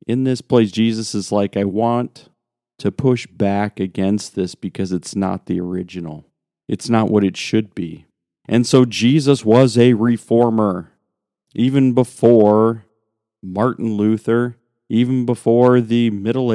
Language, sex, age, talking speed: English, male, 40-59, 140 wpm